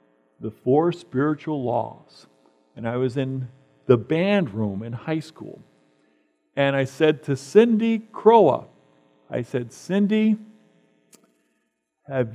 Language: English